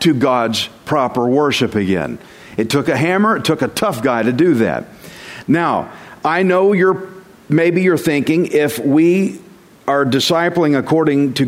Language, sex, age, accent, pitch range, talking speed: English, male, 50-69, American, 140-195 Hz, 155 wpm